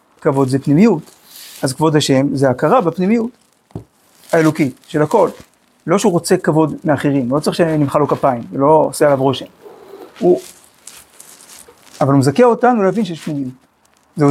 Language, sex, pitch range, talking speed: Hebrew, male, 140-185 Hz, 145 wpm